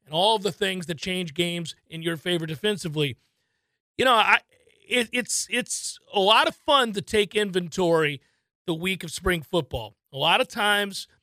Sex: male